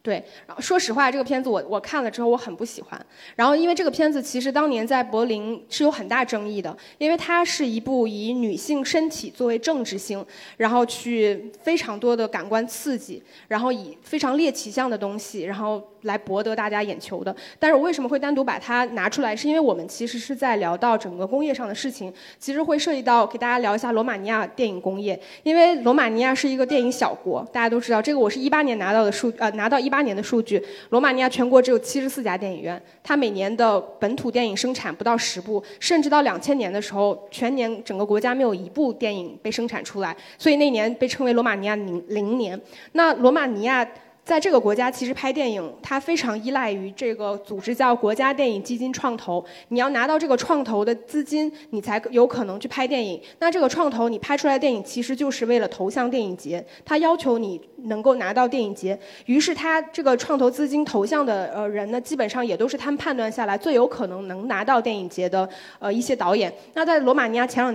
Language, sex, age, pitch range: Chinese, female, 10-29, 210-270 Hz